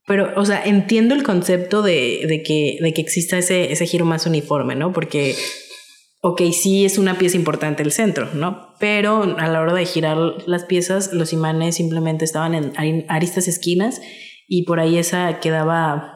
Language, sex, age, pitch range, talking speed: Spanish, female, 20-39, 160-185 Hz, 180 wpm